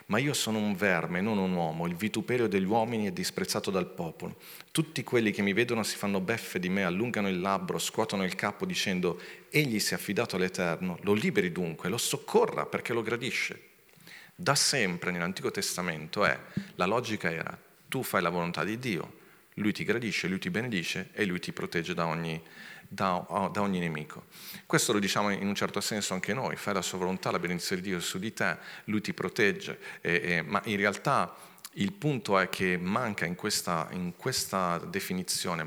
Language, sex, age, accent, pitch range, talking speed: Italian, male, 40-59, native, 90-105 Hz, 185 wpm